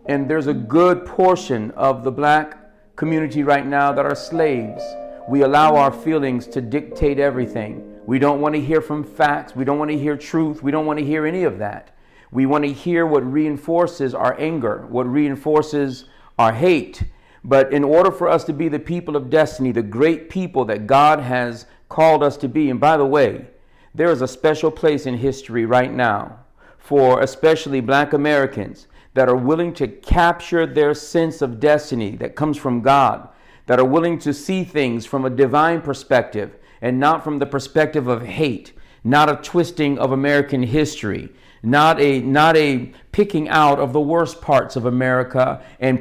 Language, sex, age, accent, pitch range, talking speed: English, male, 50-69, American, 130-155 Hz, 185 wpm